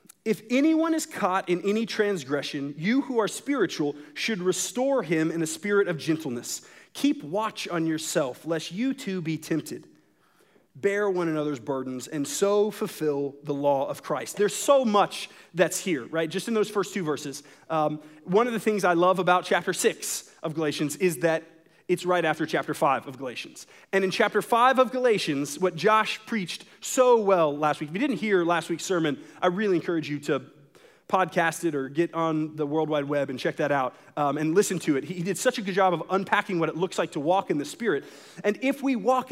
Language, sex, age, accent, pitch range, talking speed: English, male, 30-49, American, 160-215 Hz, 210 wpm